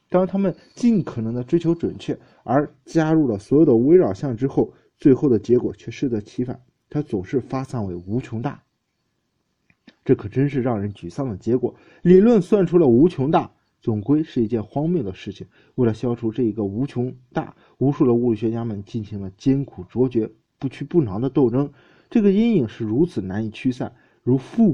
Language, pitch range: Chinese, 110-160 Hz